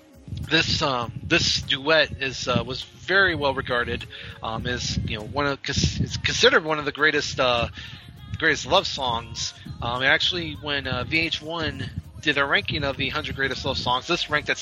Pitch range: 115-145 Hz